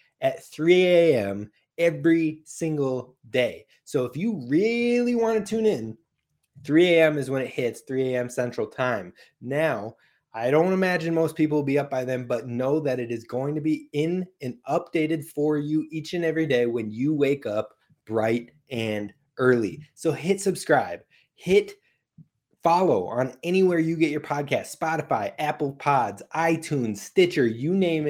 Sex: male